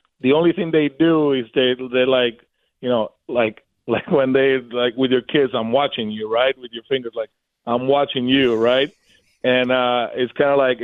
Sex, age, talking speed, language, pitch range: male, 30-49, 205 wpm, English, 125-145 Hz